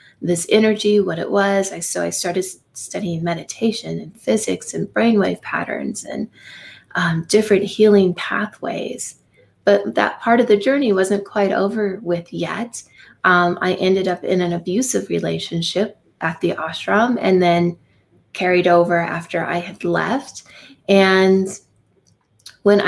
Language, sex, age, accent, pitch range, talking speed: English, female, 30-49, American, 175-205 Hz, 140 wpm